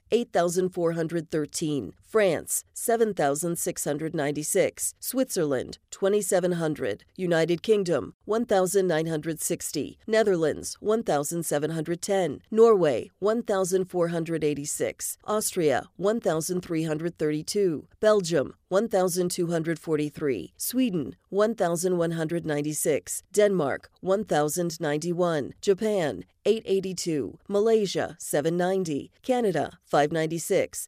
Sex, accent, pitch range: female, American, 165-200 Hz